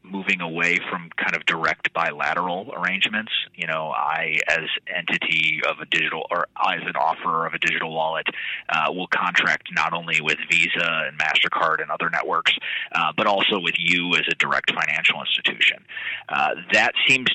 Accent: American